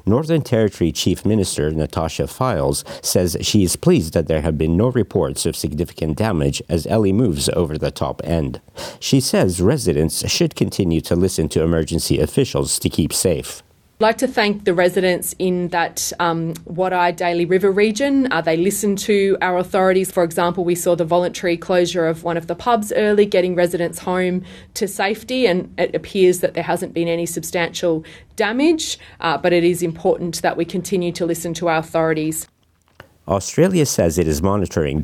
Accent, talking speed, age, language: Australian, 175 wpm, 30-49, English